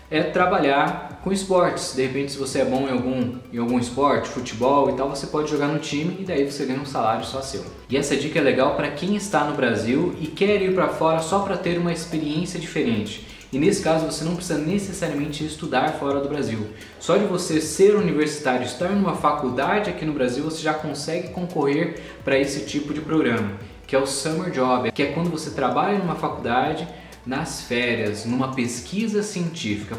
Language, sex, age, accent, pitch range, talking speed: Portuguese, male, 20-39, Brazilian, 130-160 Hz, 200 wpm